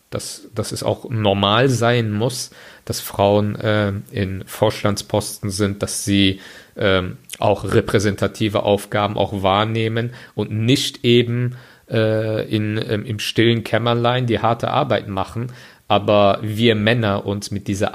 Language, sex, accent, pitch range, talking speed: German, male, German, 100-115 Hz, 130 wpm